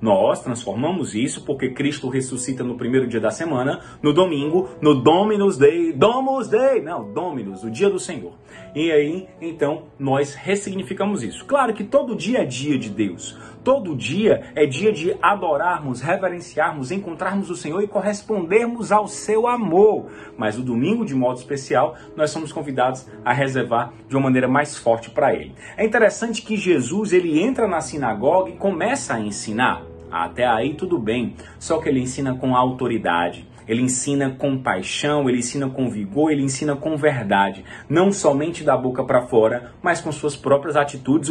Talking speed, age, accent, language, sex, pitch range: 165 wpm, 30-49, Brazilian, Portuguese, male, 130-190 Hz